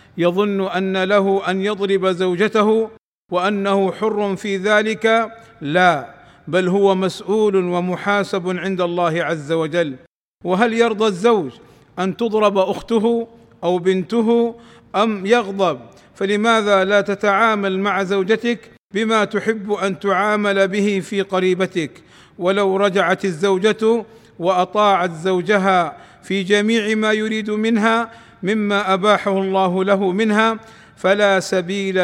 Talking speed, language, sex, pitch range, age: 110 wpm, Arabic, male, 185-210 Hz, 50-69